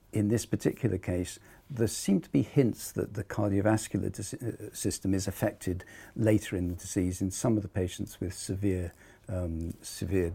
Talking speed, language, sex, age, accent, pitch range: 170 wpm, English, male, 50-69, British, 95-115 Hz